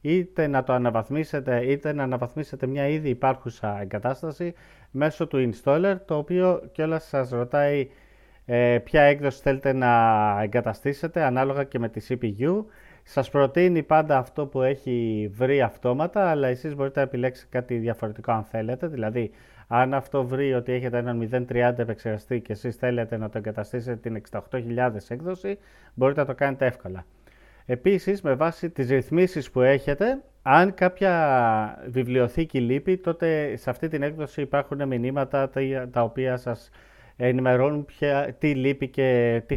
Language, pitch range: Greek, 120-155 Hz